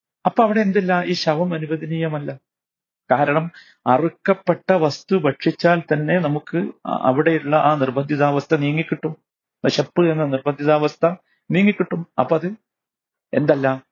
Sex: male